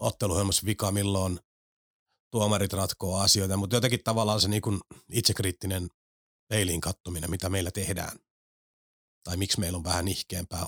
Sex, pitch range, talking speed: male, 90-105 Hz, 130 wpm